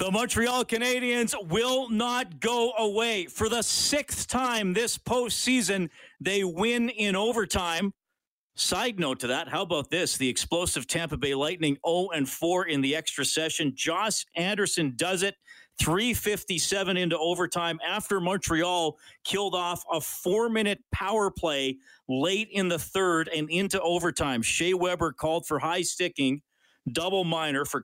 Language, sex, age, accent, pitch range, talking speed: English, male, 40-59, American, 135-190 Hz, 145 wpm